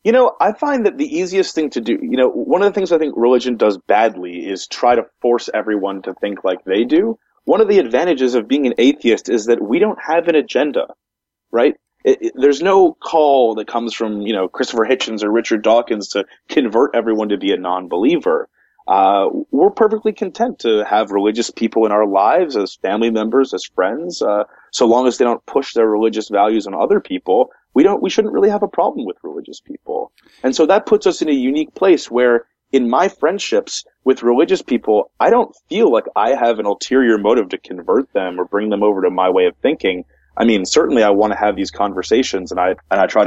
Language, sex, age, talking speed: English, male, 30-49, 220 wpm